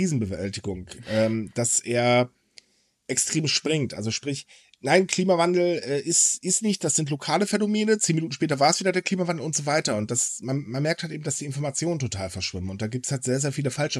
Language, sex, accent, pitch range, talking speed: German, male, German, 120-165 Hz, 205 wpm